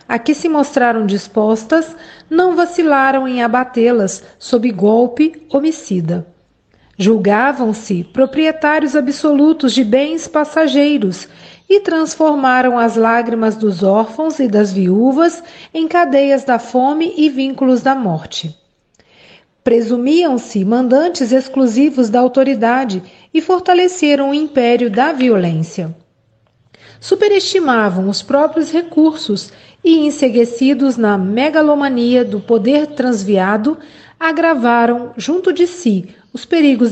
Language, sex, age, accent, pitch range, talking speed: Portuguese, female, 40-59, Brazilian, 220-305 Hz, 100 wpm